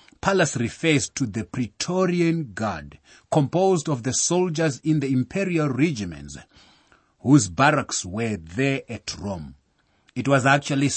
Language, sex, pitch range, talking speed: English, male, 105-150 Hz, 125 wpm